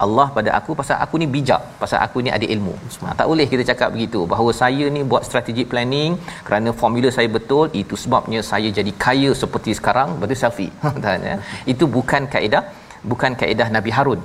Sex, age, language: male, 40-59, Malayalam